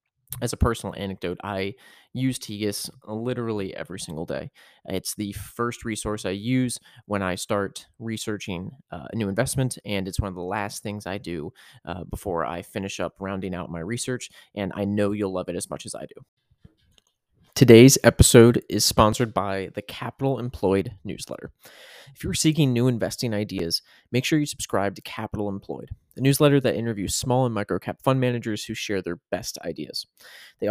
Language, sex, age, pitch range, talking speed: English, male, 20-39, 100-125 Hz, 180 wpm